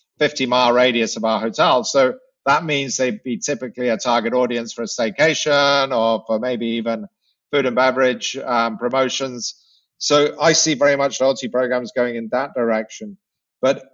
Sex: male